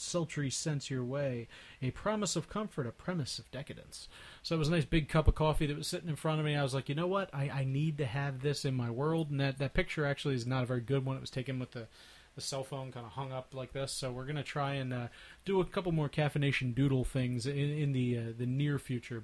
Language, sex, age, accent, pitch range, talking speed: English, male, 30-49, American, 130-160 Hz, 275 wpm